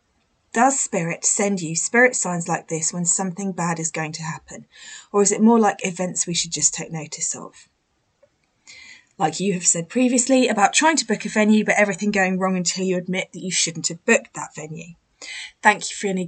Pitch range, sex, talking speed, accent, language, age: 175-255 Hz, female, 205 wpm, British, English, 20-39